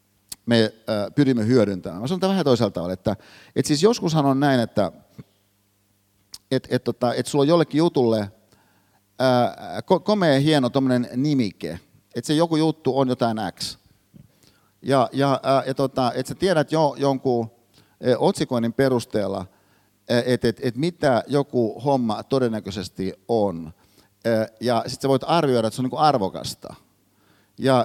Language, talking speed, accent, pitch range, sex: Finnish, 145 wpm, native, 105-140 Hz, male